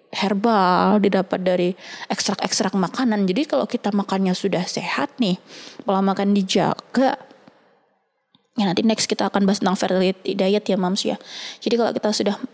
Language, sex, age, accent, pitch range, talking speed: Indonesian, female, 20-39, native, 185-225 Hz, 150 wpm